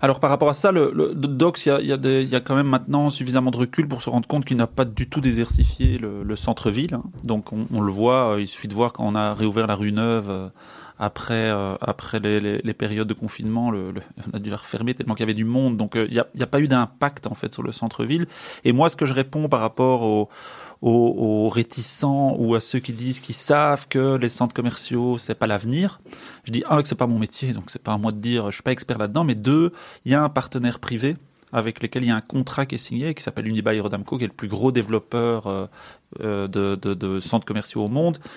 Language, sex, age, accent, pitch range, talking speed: French, male, 30-49, French, 110-140 Hz, 260 wpm